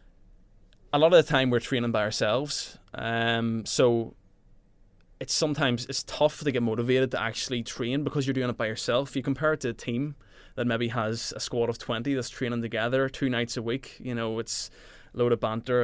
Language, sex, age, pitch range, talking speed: English, male, 20-39, 110-130 Hz, 205 wpm